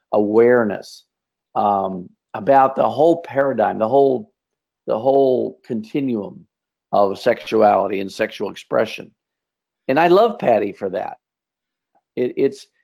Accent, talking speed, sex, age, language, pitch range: American, 110 wpm, male, 50-69, English, 110-135 Hz